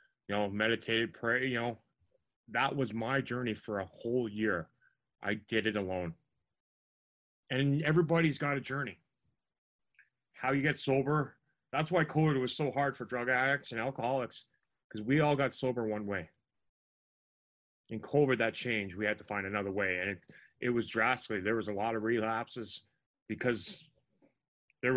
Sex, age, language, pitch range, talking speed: male, 30-49, English, 110-135 Hz, 165 wpm